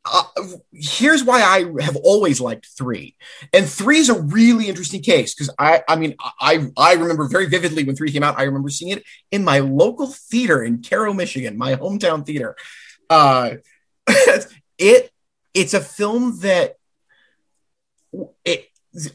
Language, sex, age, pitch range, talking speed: English, male, 30-49, 145-235 Hz, 155 wpm